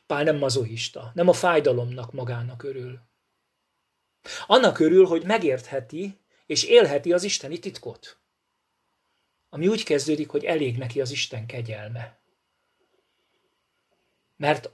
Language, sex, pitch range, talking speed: Hungarian, male, 125-175 Hz, 110 wpm